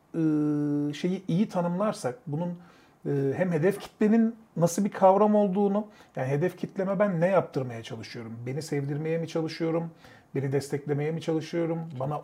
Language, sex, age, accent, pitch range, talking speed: Turkish, male, 40-59, native, 150-185 Hz, 130 wpm